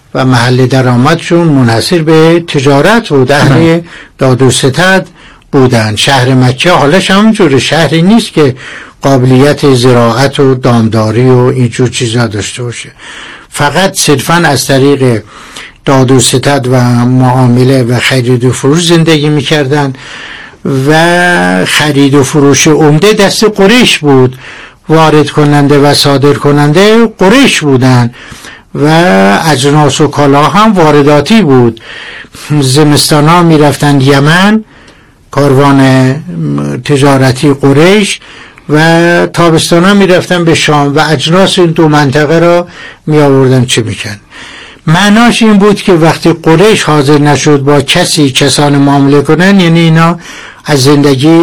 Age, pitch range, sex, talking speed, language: 60-79, 130-165 Hz, male, 120 wpm, Persian